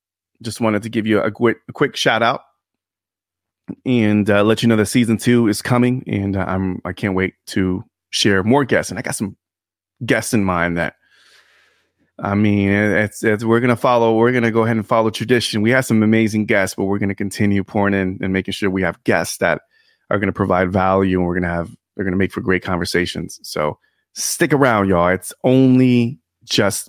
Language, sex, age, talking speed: English, male, 30-49, 220 wpm